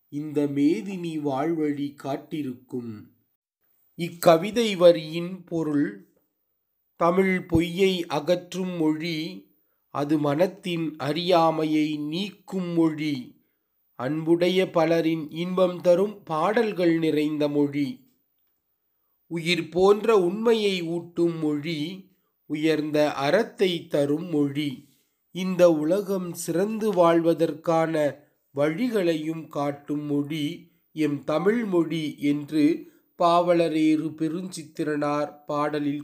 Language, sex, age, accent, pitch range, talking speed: Tamil, male, 30-49, native, 145-175 Hz, 75 wpm